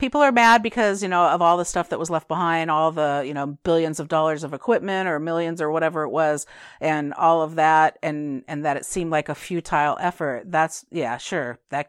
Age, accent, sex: 50-69, American, female